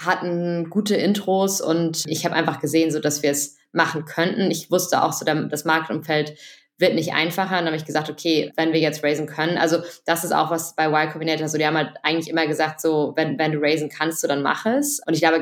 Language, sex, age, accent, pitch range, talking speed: German, female, 20-39, German, 155-170 Hz, 245 wpm